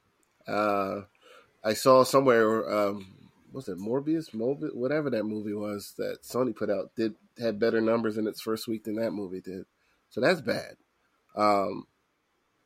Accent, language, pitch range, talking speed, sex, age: American, English, 105-130 Hz, 155 wpm, male, 30-49